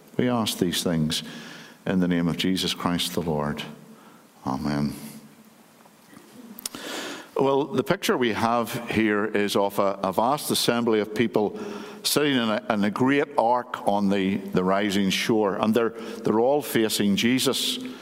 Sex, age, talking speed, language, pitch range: male, 60-79, 145 wpm, English, 95-140 Hz